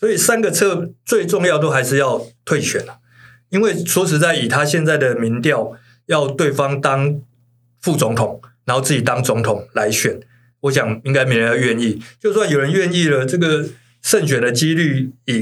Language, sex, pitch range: Chinese, male, 120-160 Hz